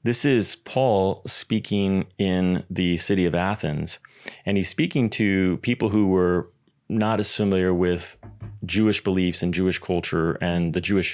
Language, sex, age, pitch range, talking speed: English, male, 30-49, 90-115 Hz, 150 wpm